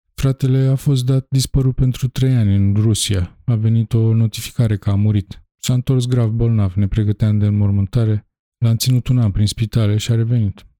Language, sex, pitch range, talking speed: Romanian, male, 100-115 Hz, 195 wpm